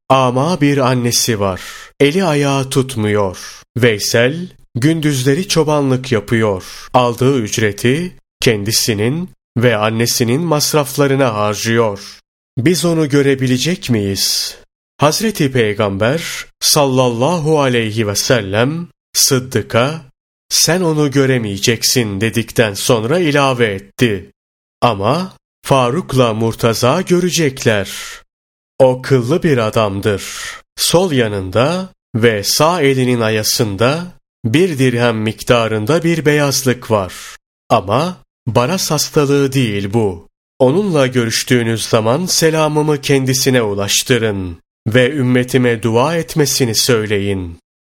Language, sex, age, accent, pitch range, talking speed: Turkish, male, 30-49, native, 110-145 Hz, 90 wpm